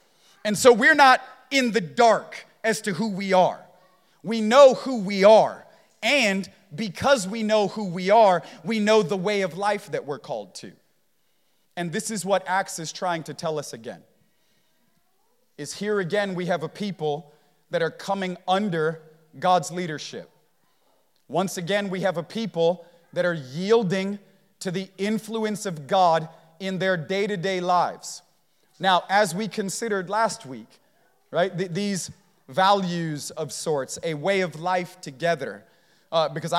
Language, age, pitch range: English, 30-49, 175-200 Hz